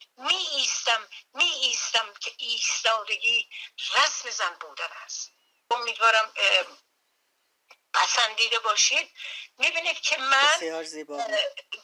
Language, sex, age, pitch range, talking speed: Persian, female, 60-79, 215-285 Hz, 85 wpm